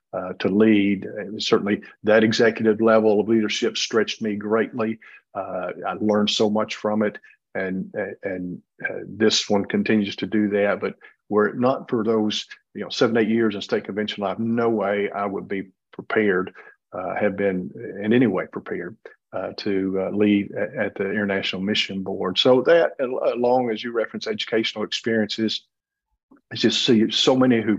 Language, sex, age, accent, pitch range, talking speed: English, male, 50-69, American, 100-110 Hz, 175 wpm